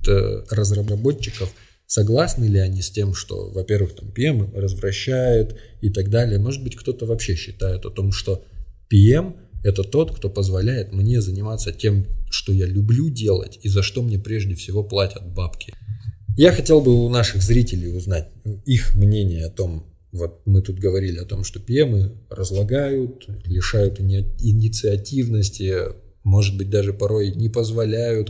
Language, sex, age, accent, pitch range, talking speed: Russian, male, 20-39, native, 95-110 Hz, 145 wpm